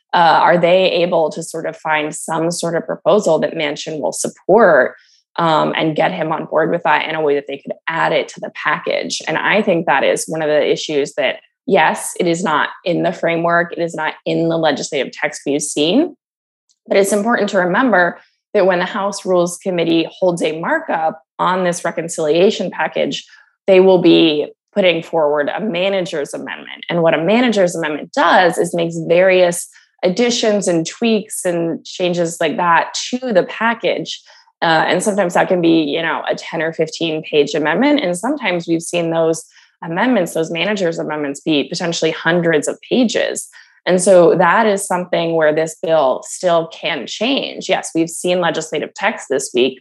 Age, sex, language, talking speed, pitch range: 20-39, female, English, 185 wpm, 160-195 Hz